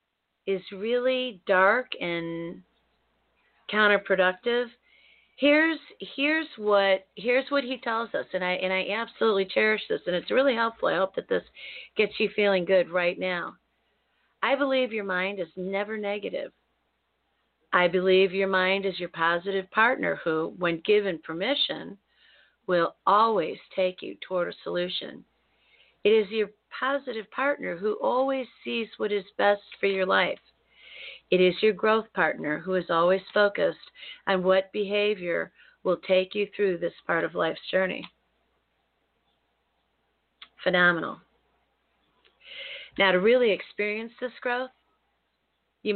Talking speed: 135 wpm